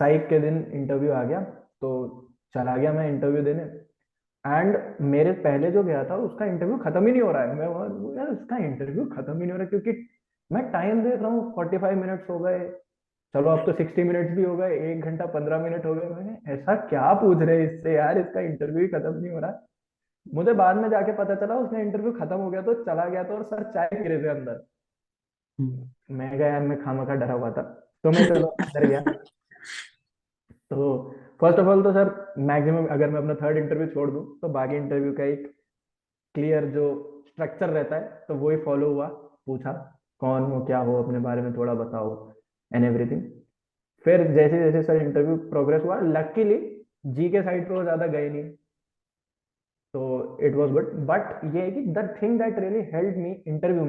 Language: Hindi